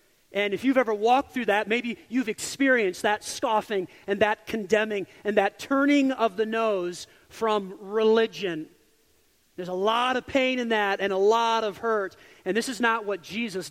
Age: 40-59